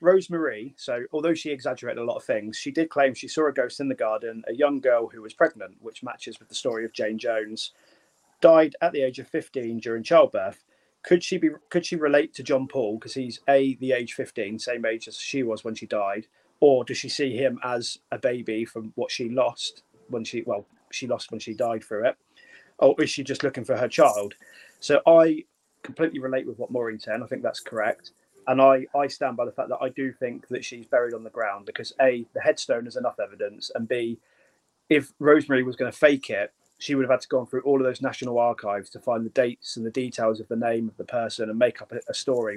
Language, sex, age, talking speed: English, male, 30-49, 240 wpm